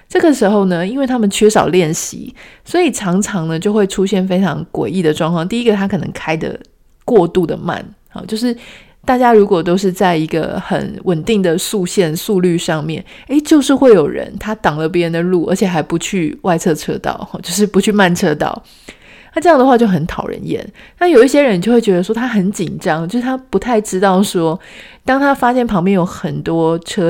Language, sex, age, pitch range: Chinese, female, 30-49, 175-225 Hz